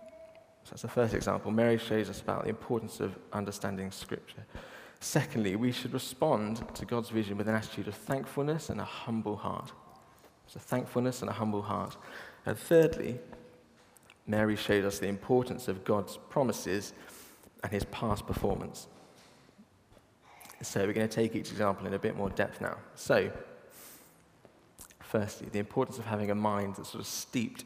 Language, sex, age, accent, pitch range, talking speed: English, male, 20-39, British, 105-120 Hz, 165 wpm